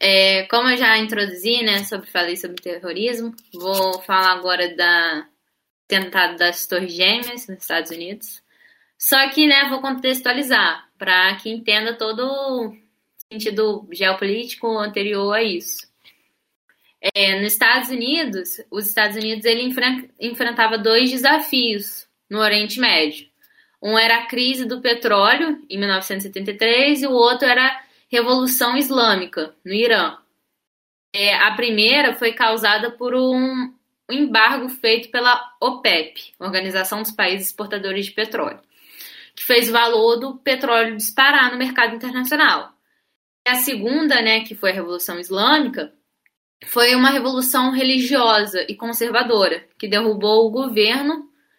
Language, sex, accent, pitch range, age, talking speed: Portuguese, female, Brazilian, 205-255 Hz, 10-29, 130 wpm